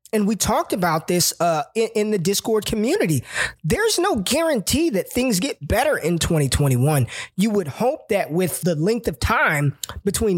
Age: 20-39